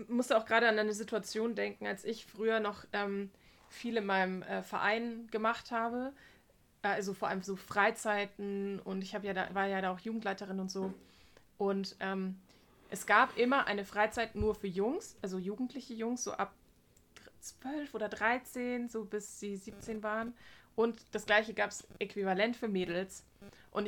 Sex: female